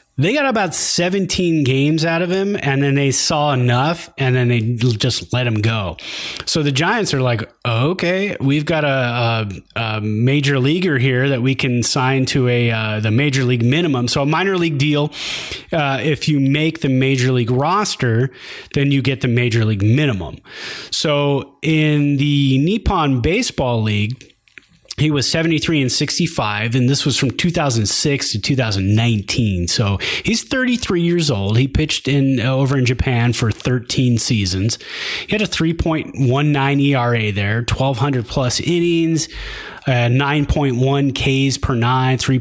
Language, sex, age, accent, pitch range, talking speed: English, male, 30-49, American, 120-150 Hz, 155 wpm